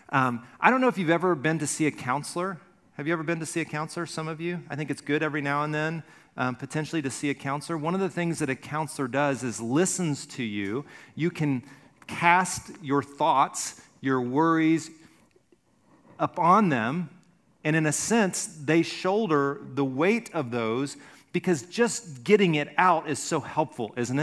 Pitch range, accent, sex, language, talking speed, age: 130-165 Hz, American, male, English, 190 wpm, 40-59